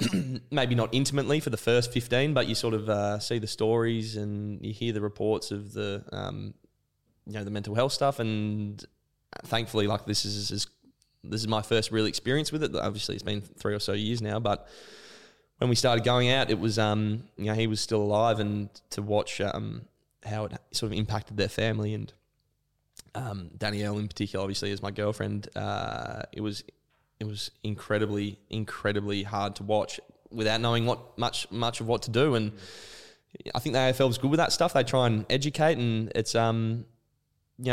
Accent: Australian